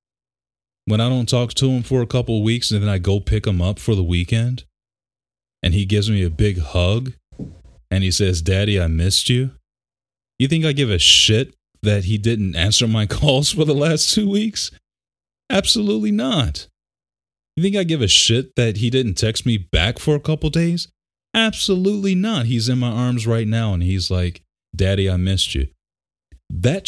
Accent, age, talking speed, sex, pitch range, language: American, 30-49, 190 wpm, male, 90-125 Hz, English